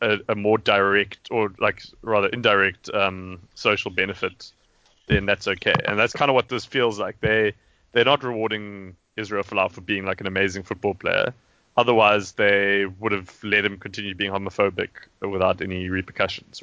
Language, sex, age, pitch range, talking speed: English, male, 20-39, 100-110 Hz, 175 wpm